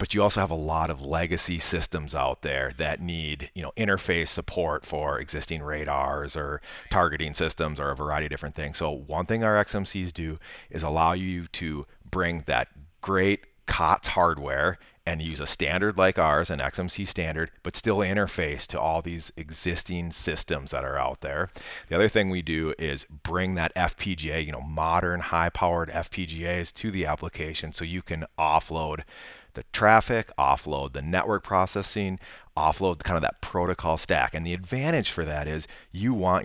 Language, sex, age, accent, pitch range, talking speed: English, male, 30-49, American, 75-90 Hz, 175 wpm